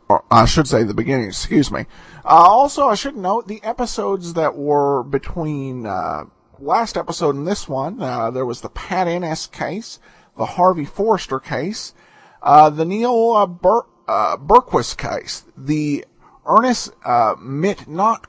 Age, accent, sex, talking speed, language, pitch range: 40-59, American, male, 155 wpm, English, 145-210 Hz